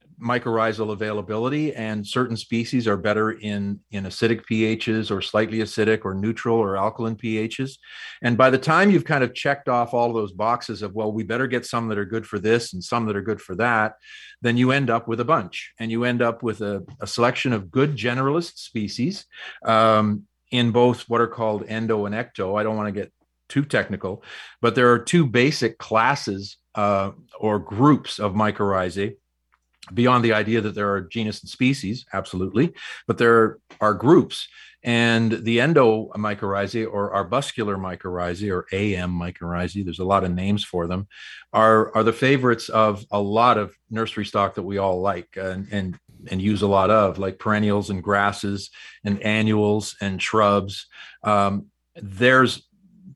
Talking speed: 175 wpm